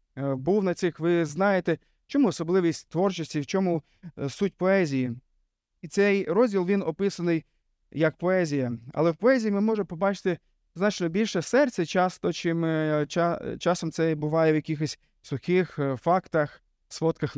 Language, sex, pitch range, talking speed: Ukrainian, male, 150-190 Hz, 130 wpm